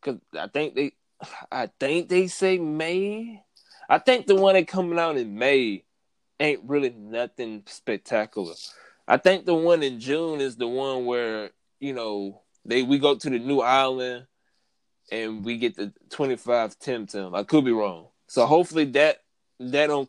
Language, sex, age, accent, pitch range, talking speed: English, male, 20-39, American, 115-155 Hz, 175 wpm